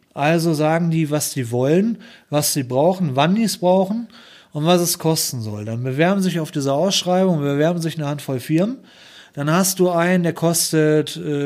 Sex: male